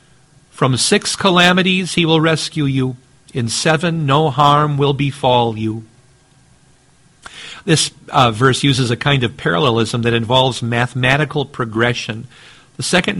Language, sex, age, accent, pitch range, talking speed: English, male, 50-69, American, 120-150 Hz, 125 wpm